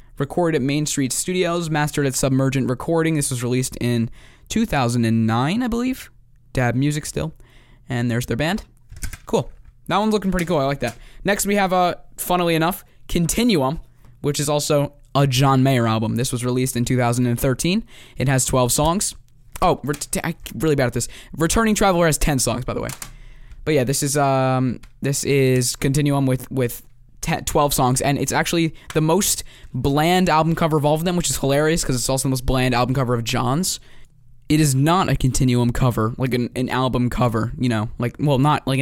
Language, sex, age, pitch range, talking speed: English, male, 10-29, 125-160 Hz, 195 wpm